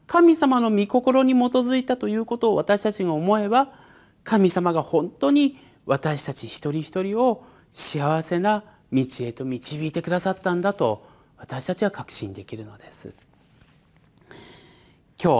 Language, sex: Japanese, male